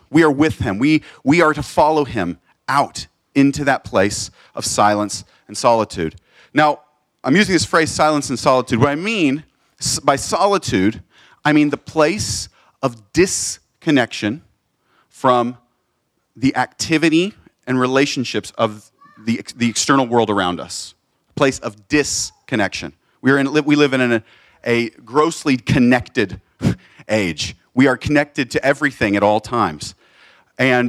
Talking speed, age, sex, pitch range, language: 140 wpm, 40-59, male, 110-140 Hz, English